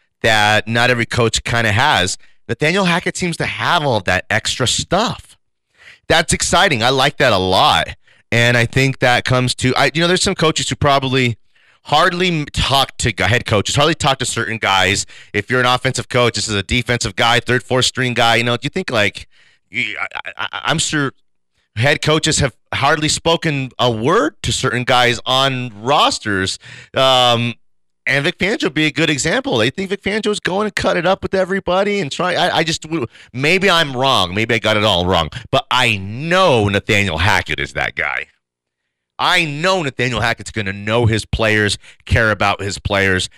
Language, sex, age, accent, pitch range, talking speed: English, male, 30-49, American, 105-150 Hz, 190 wpm